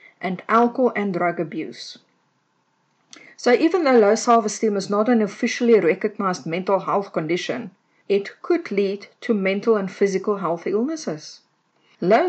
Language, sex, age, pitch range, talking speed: English, female, 50-69, 195-245 Hz, 135 wpm